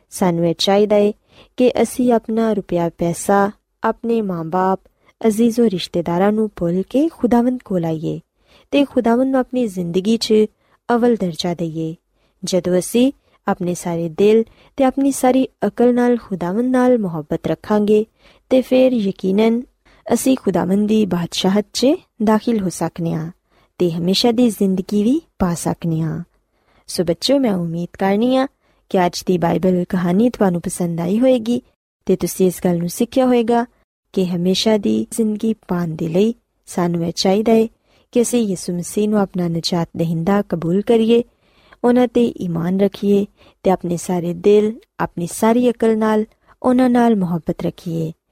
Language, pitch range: Punjabi, 175-235 Hz